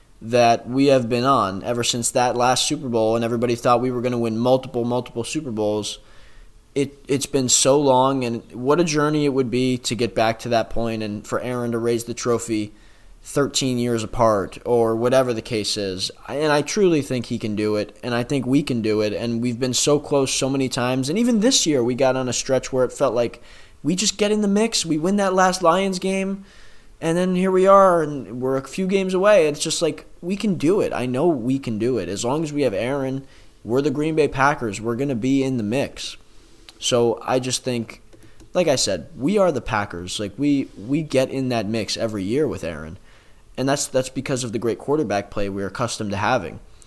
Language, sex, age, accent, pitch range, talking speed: English, male, 20-39, American, 115-145 Hz, 230 wpm